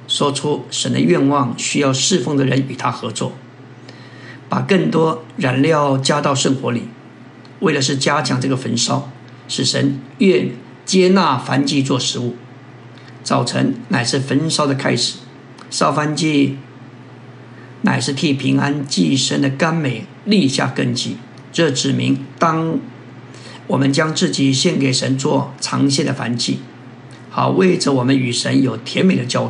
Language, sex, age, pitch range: Chinese, male, 50-69, 125-145 Hz